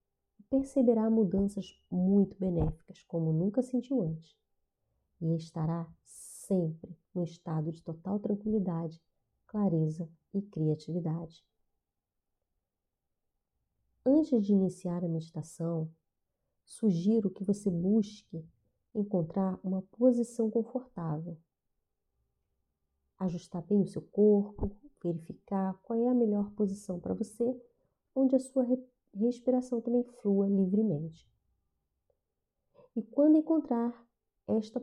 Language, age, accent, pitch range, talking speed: Portuguese, 40-59, Brazilian, 160-220 Hz, 100 wpm